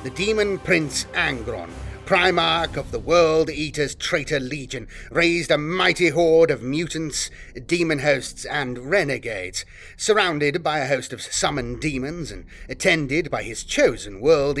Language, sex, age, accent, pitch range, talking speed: English, male, 30-49, British, 125-175 Hz, 140 wpm